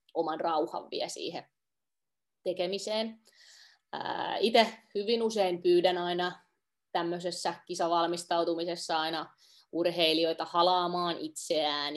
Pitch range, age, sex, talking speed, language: 160-200 Hz, 20-39, female, 80 wpm, Finnish